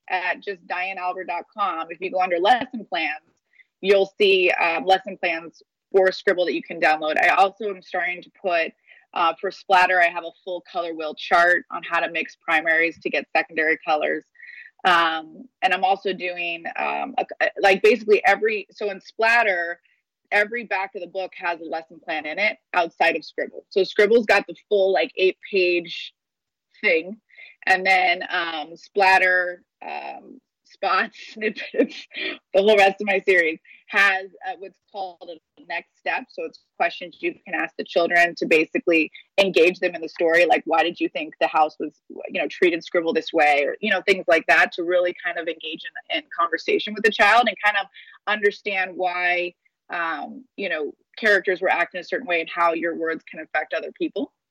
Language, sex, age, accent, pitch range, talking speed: English, female, 20-39, American, 170-210 Hz, 185 wpm